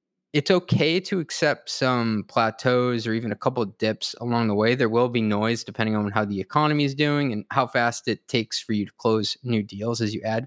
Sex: male